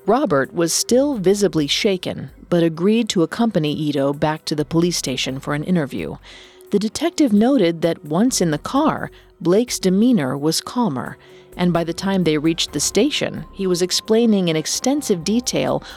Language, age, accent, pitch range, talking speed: English, 40-59, American, 160-225 Hz, 165 wpm